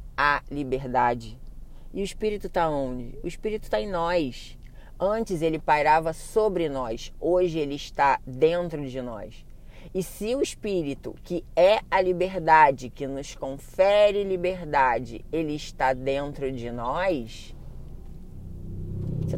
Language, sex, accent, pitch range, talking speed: Portuguese, female, Brazilian, 140-185 Hz, 125 wpm